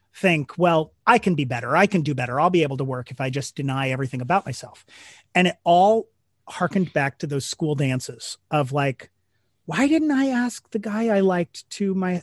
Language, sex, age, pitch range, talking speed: English, male, 30-49, 135-175 Hz, 210 wpm